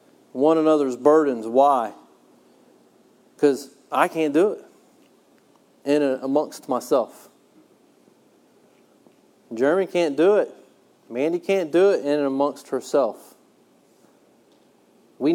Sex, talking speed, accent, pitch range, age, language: male, 100 wpm, American, 135-170 Hz, 40-59, English